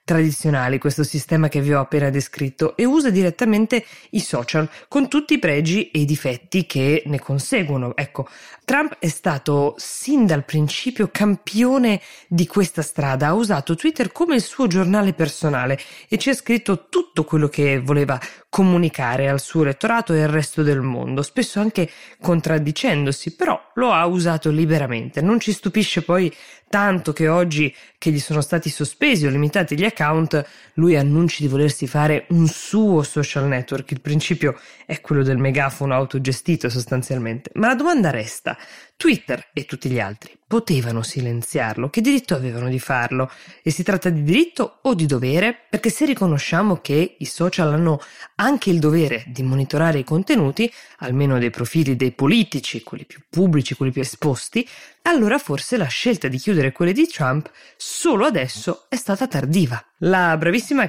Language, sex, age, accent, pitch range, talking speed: Italian, female, 20-39, native, 140-190 Hz, 165 wpm